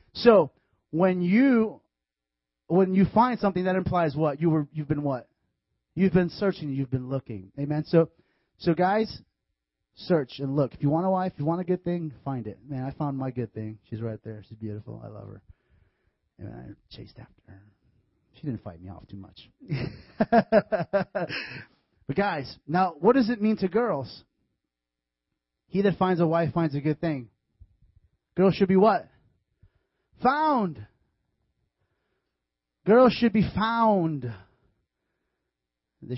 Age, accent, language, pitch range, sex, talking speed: 30-49, American, English, 110-165 Hz, male, 160 wpm